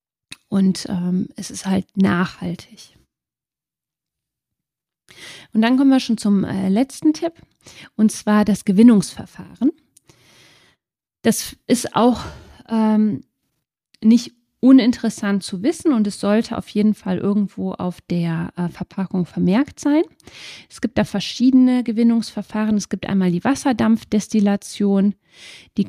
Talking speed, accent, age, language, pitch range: 120 wpm, German, 30-49, German, 195-235 Hz